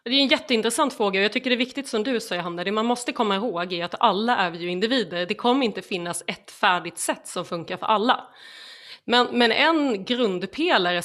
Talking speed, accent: 225 wpm, native